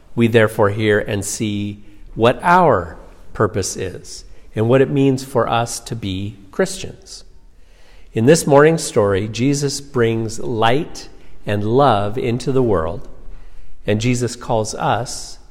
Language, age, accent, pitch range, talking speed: English, 50-69, American, 100-130 Hz, 130 wpm